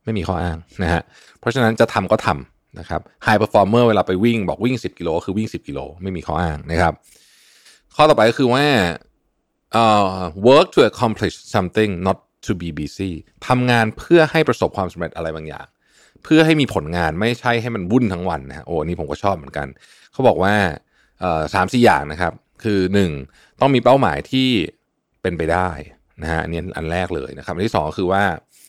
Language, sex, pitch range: Thai, male, 85-115 Hz